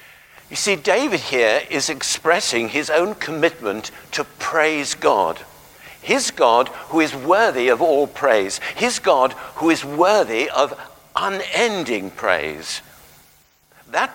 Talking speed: 125 wpm